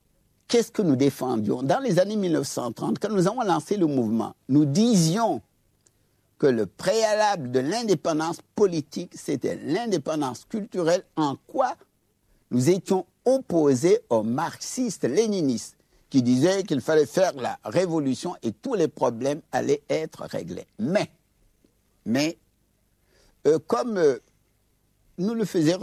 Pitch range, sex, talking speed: 145-215 Hz, male, 130 wpm